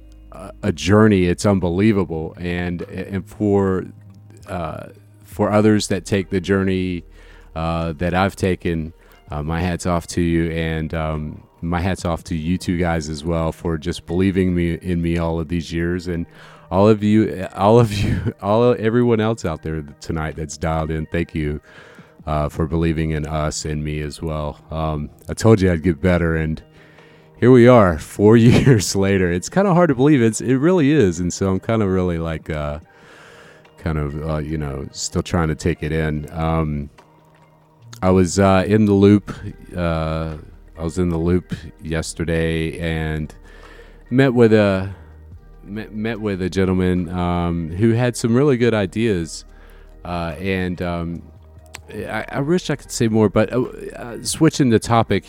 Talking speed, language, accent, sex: 175 wpm, English, American, male